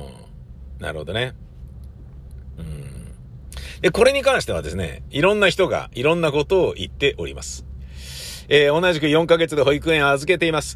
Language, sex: Japanese, male